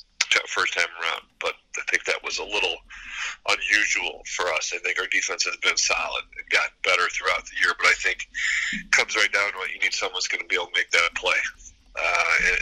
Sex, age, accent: male, 40-59, American